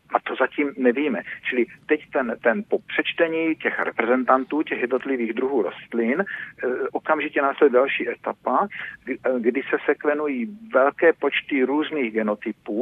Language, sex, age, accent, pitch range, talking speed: Czech, male, 50-69, native, 130-165 Hz, 140 wpm